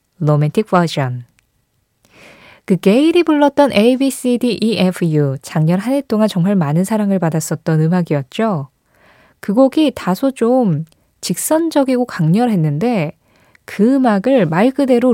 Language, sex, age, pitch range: Korean, female, 20-39, 160-225 Hz